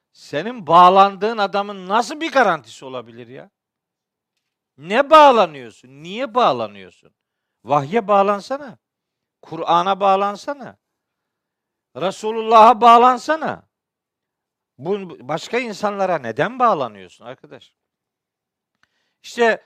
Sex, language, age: male, Turkish, 50-69